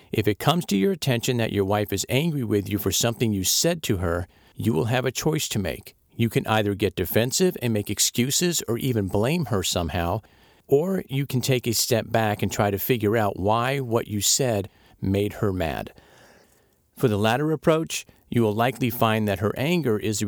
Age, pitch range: 50-69, 100-130 Hz